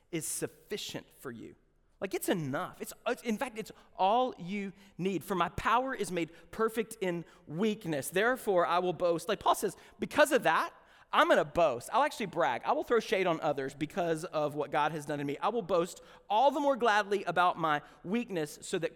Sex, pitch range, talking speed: male, 150-215 Hz, 205 wpm